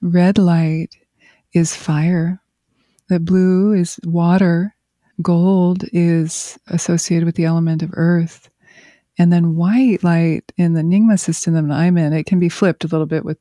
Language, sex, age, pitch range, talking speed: English, female, 30-49, 165-195 Hz, 155 wpm